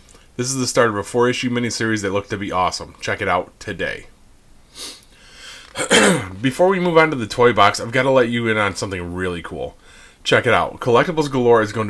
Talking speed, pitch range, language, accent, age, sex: 210 wpm, 95-125 Hz, English, American, 30-49, male